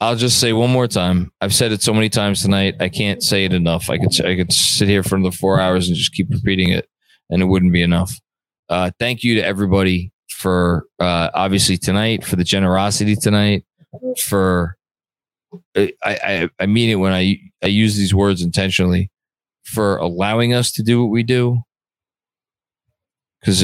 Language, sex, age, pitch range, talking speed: English, male, 20-39, 90-110 Hz, 185 wpm